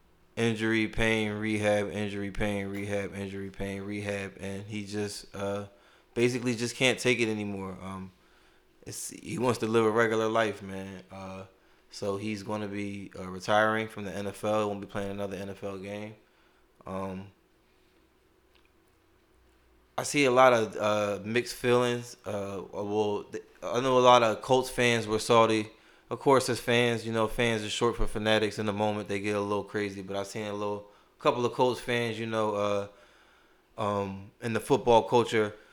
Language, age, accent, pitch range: English, 20-39, American, 100-120 Hz